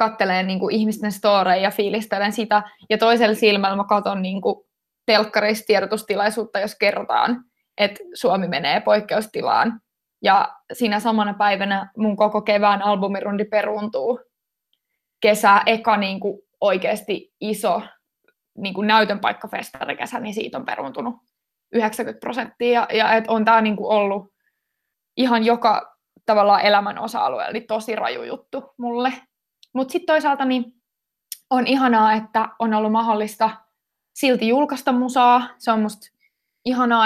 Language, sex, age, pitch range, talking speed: Finnish, female, 20-39, 210-245 Hz, 125 wpm